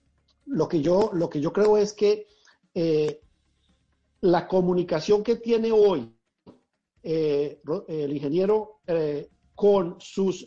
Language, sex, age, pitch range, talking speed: Spanish, male, 50-69, 155-205 Hz, 110 wpm